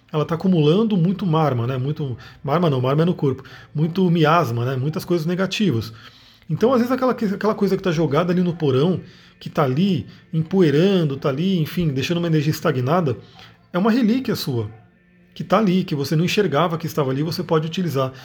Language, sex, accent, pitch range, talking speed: Portuguese, male, Brazilian, 140-185 Hz, 195 wpm